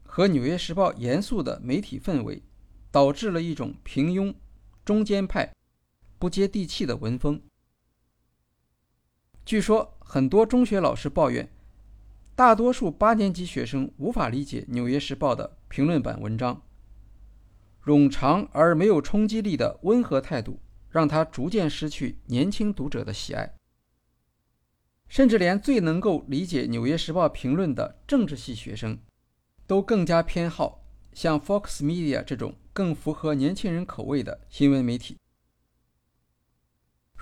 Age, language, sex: 50-69, Chinese, male